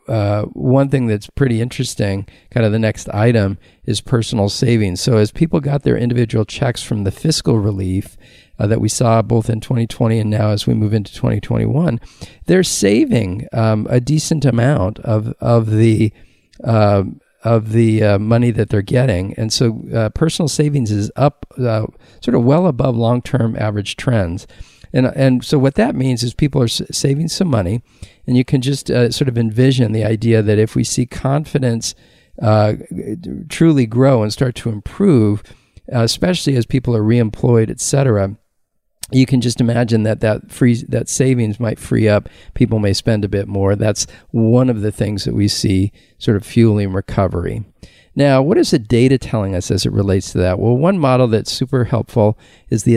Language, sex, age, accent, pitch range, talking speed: English, male, 50-69, American, 105-130 Hz, 180 wpm